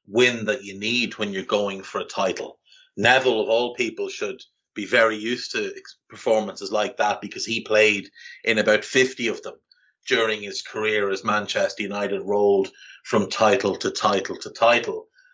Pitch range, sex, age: 100-135 Hz, male, 30-49